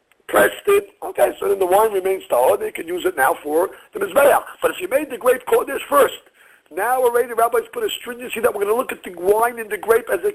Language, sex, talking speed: English, male, 260 wpm